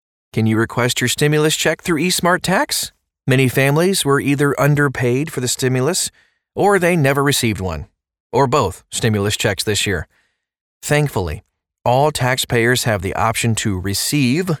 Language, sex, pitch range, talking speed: English, male, 105-140 Hz, 150 wpm